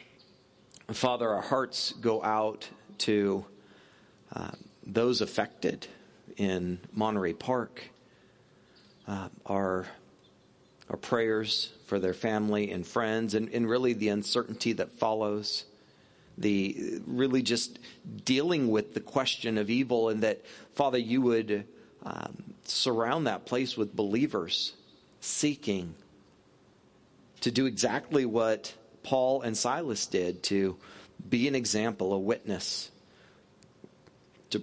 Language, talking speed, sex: English, 110 wpm, male